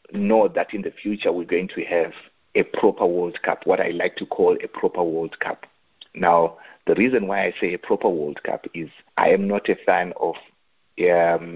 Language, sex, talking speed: English, male, 210 wpm